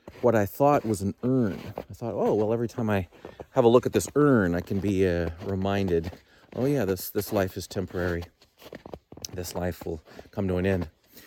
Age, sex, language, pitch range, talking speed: 40-59, male, English, 90-110 Hz, 200 wpm